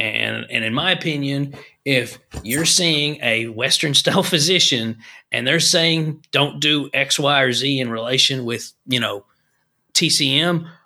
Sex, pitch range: male, 115-155 Hz